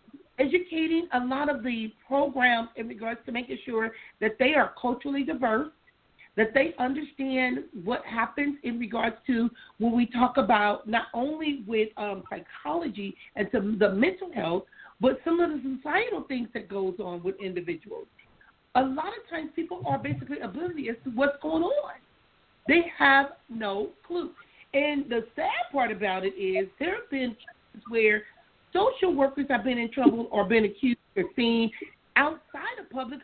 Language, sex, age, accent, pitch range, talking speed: English, female, 40-59, American, 230-320 Hz, 160 wpm